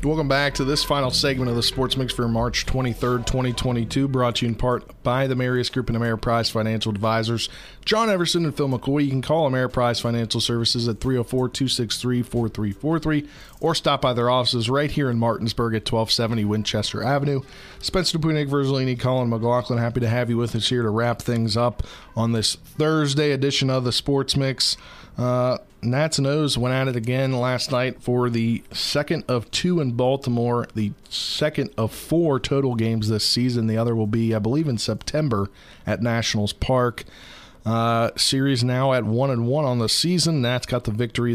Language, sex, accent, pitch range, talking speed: English, male, American, 115-135 Hz, 185 wpm